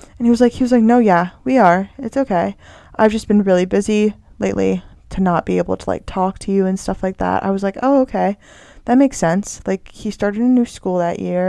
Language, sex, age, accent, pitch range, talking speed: English, female, 20-39, American, 180-215 Hz, 250 wpm